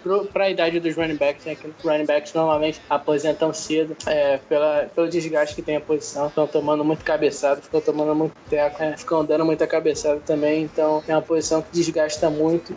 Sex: male